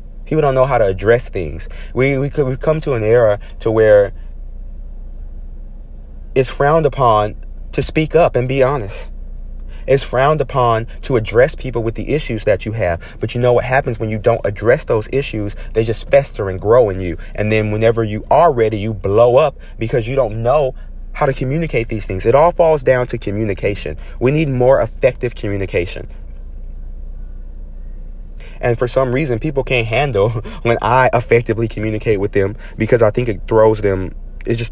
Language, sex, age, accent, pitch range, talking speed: English, male, 30-49, American, 90-125 Hz, 180 wpm